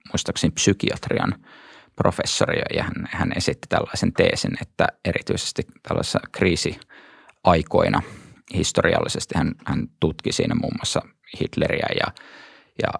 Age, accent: 20-39, native